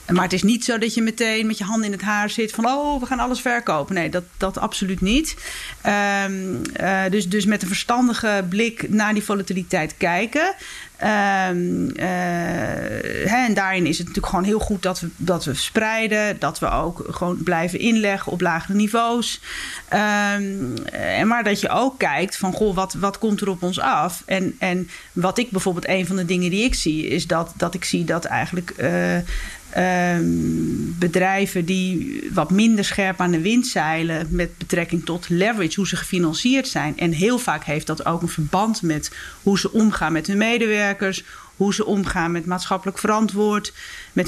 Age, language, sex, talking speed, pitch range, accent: 40-59, English, female, 180 wpm, 175-215 Hz, Dutch